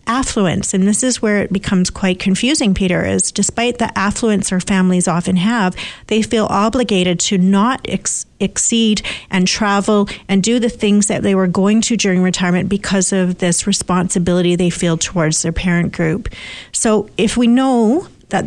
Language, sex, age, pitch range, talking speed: English, female, 40-59, 180-205 Hz, 170 wpm